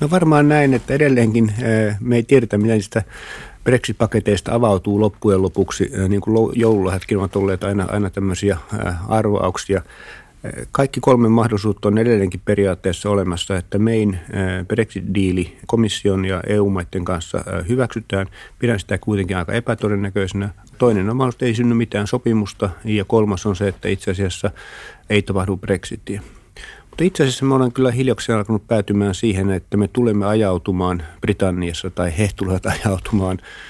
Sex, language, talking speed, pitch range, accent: male, Finnish, 135 wpm, 95-115 Hz, native